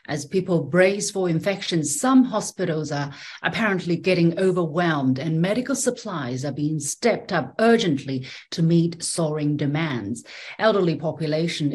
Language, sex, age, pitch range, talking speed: English, female, 40-59, 160-205 Hz, 130 wpm